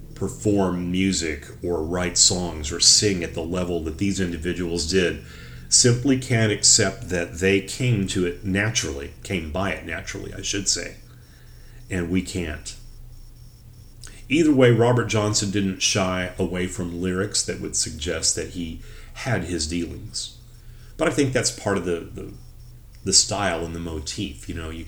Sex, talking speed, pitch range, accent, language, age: male, 160 wpm, 85-115 Hz, American, English, 40-59